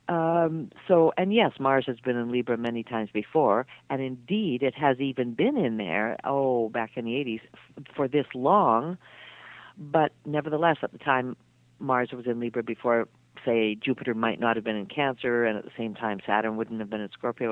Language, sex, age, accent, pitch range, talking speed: English, female, 50-69, American, 115-160 Hz, 200 wpm